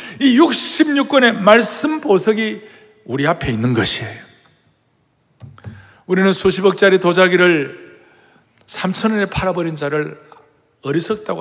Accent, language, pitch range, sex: native, Korean, 145-215 Hz, male